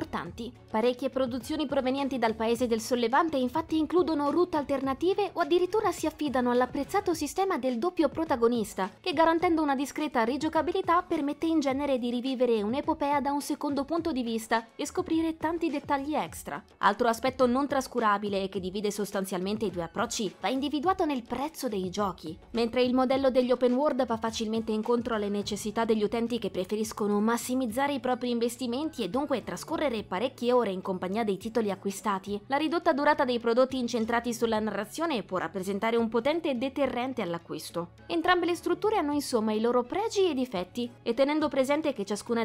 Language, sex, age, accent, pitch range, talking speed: Italian, female, 20-39, native, 220-295 Hz, 165 wpm